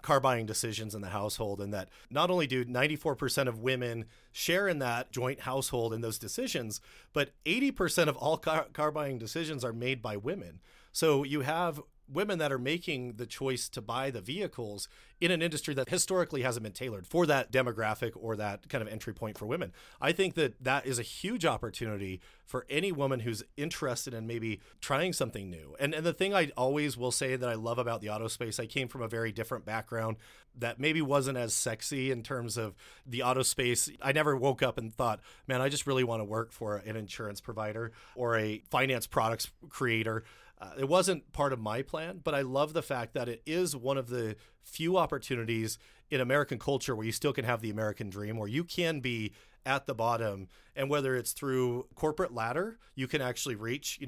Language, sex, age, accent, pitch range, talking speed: English, male, 30-49, American, 115-145 Hz, 210 wpm